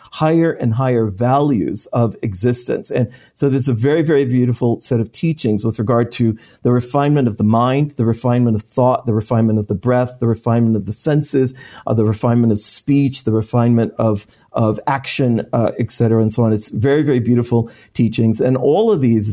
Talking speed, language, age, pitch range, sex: 195 wpm, English, 40-59, 115-130 Hz, male